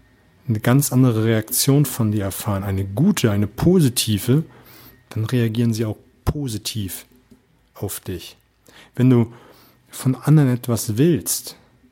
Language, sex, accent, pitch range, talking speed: German, male, German, 110-130 Hz, 120 wpm